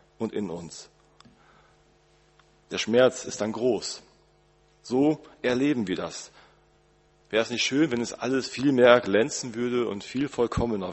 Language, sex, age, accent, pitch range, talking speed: German, male, 40-59, German, 105-135 Hz, 145 wpm